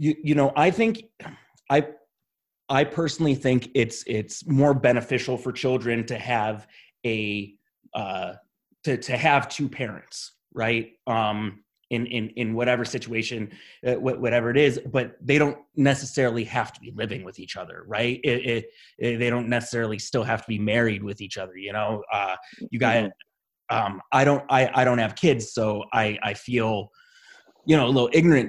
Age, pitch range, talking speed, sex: 30-49, 110-130 Hz, 175 wpm, male